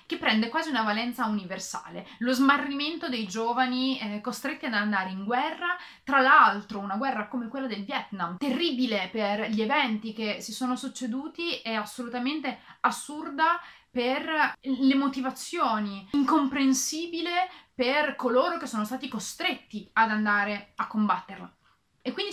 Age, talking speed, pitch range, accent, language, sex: 30-49, 135 wpm, 215-280 Hz, native, Italian, female